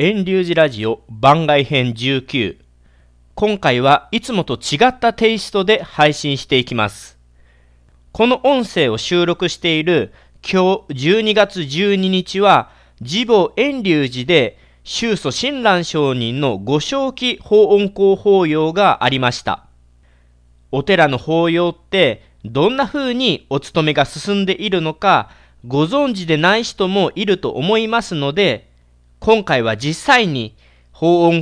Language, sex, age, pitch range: Japanese, male, 40-59, 120-200 Hz